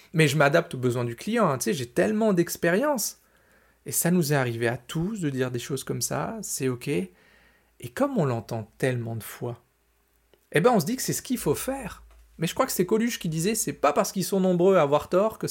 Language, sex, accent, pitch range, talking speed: French, male, French, 135-200 Hz, 250 wpm